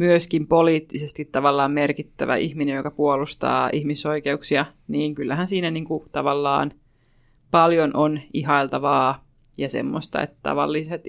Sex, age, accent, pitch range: female, 20-39, native, 145-175 Hz